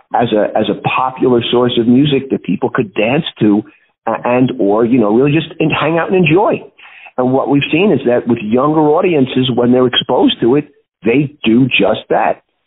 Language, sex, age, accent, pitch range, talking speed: English, male, 50-69, American, 115-140 Hz, 195 wpm